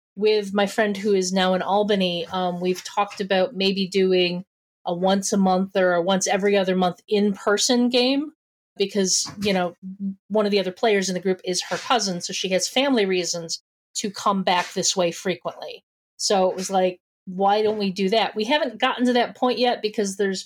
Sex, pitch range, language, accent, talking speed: female, 185-215 Hz, English, American, 200 wpm